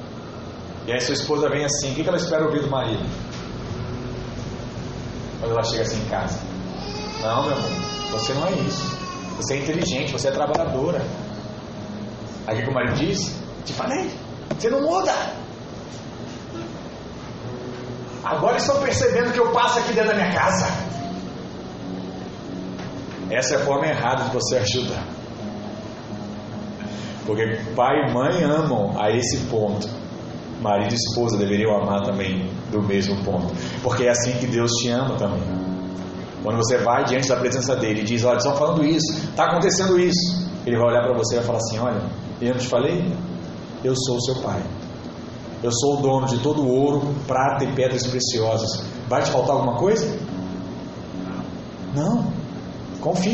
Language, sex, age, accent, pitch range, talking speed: Portuguese, male, 30-49, Brazilian, 105-145 Hz, 160 wpm